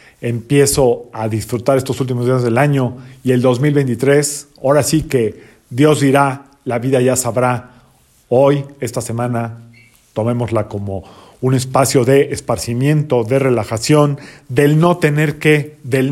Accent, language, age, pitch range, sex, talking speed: Mexican, Spanish, 40-59, 125-150 Hz, male, 135 wpm